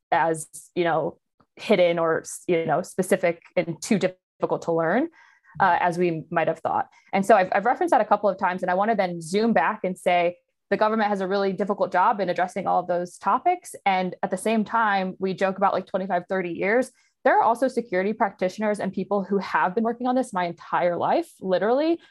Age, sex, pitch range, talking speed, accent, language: 20-39, female, 175-215 Hz, 210 wpm, American, English